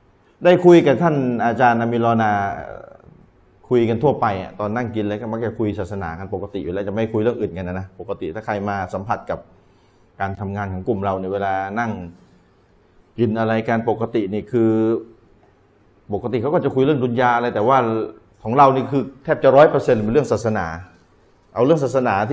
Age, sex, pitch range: 30-49, male, 105-140 Hz